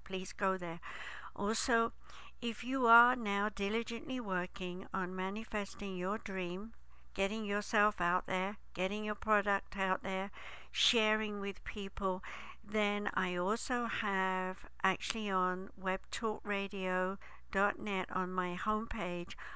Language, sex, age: English, female, 60-79